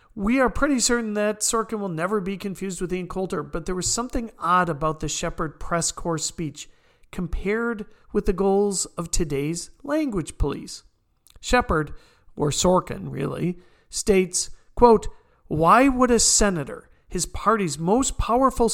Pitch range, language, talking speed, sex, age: 175-220 Hz, English, 145 wpm, male, 40-59